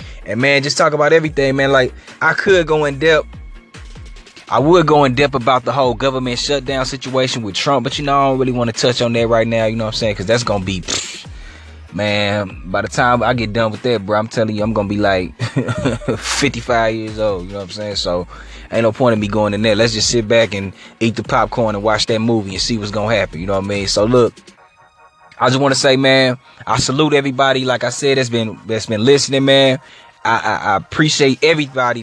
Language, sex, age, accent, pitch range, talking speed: English, male, 20-39, American, 110-140 Hz, 245 wpm